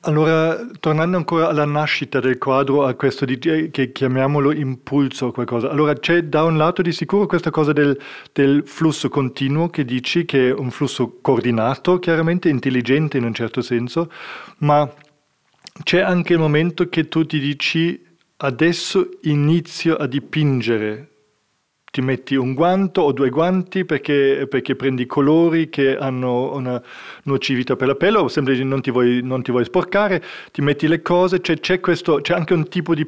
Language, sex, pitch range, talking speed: Italian, male, 130-160 Hz, 160 wpm